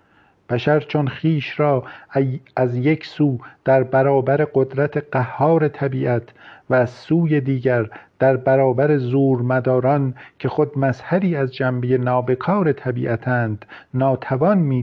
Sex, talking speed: male, 115 wpm